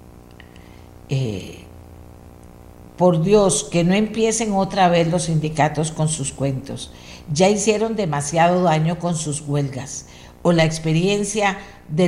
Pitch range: 140-185 Hz